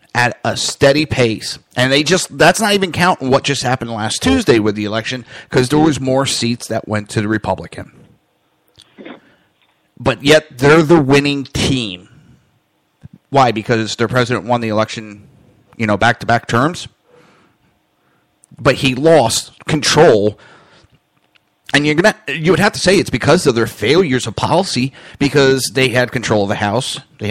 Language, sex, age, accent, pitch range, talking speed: English, male, 30-49, American, 110-145 Hz, 165 wpm